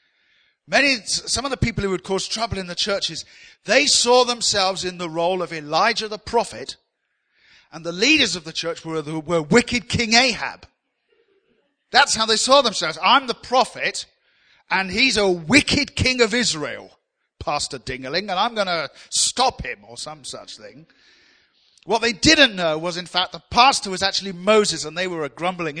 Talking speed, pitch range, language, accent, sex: 180 wpm, 165-240 Hz, English, British, male